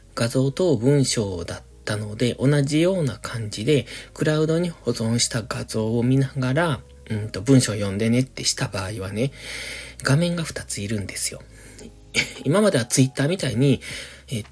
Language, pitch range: Japanese, 110-145 Hz